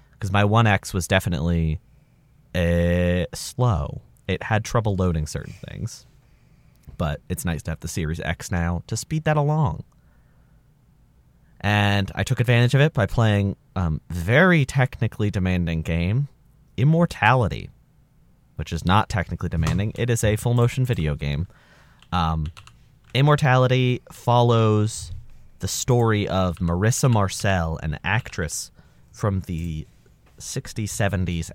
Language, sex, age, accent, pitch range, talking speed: English, male, 30-49, American, 90-125 Hz, 125 wpm